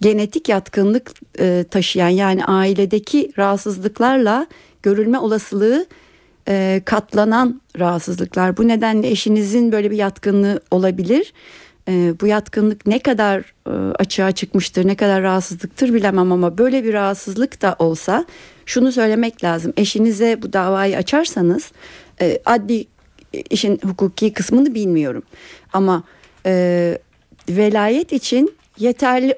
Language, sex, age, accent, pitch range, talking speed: Turkish, female, 60-79, native, 195-245 Hz, 110 wpm